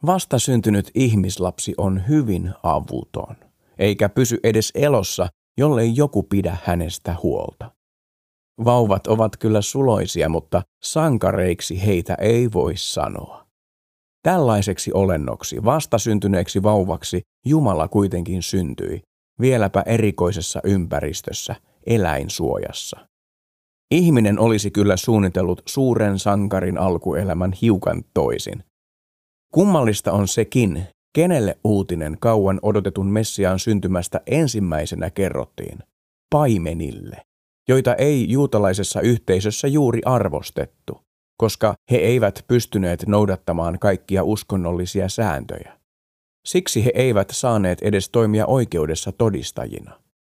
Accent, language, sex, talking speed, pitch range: native, Finnish, male, 95 wpm, 90-120 Hz